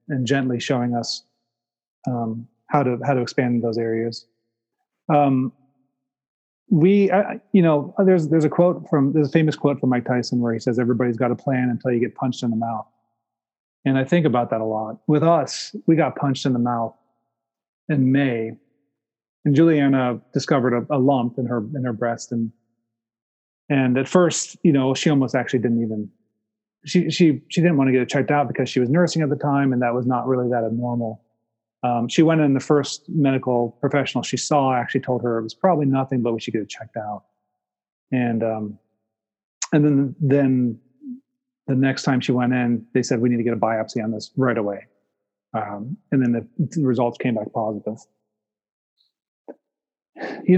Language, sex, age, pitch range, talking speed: English, male, 30-49, 115-145 Hz, 190 wpm